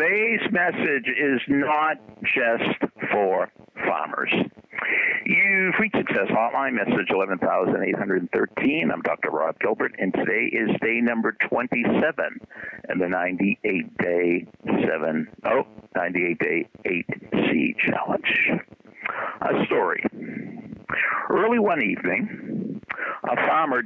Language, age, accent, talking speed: English, 60-79, American, 90 wpm